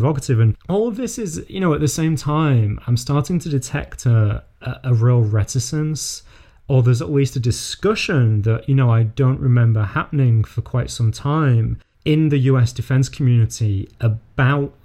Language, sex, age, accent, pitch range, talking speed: English, male, 30-49, British, 110-130 Hz, 170 wpm